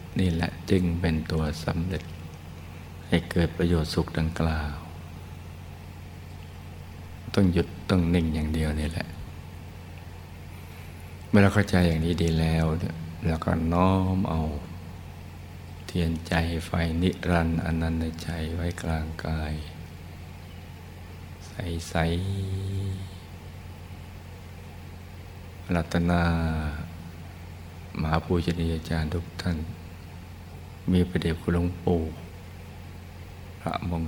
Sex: male